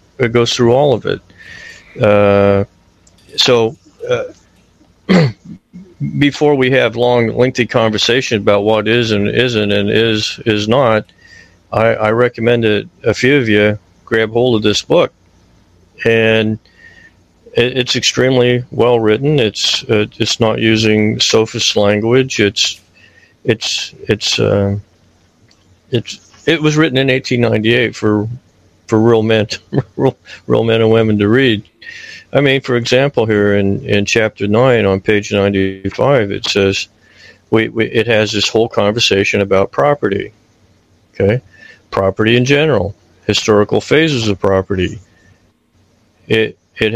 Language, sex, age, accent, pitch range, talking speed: English, male, 50-69, American, 100-120 Hz, 135 wpm